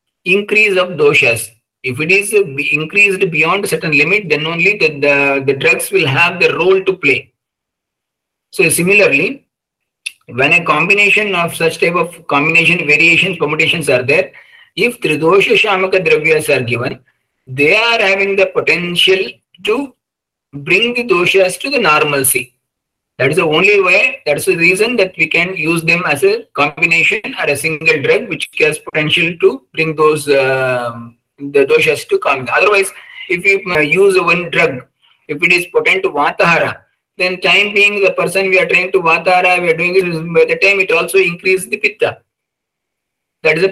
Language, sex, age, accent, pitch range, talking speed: English, male, 50-69, Indian, 155-205 Hz, 170 wpm